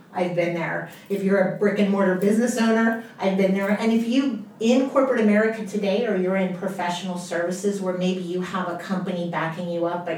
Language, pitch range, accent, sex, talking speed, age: English, 175-215 Hz, American, female, 210 wpm, 40-59